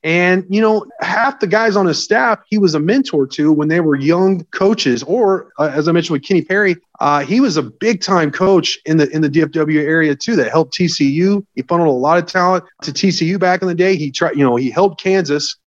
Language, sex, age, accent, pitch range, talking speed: English, male, 30-49, American, 145-185 Hz, 235 wpm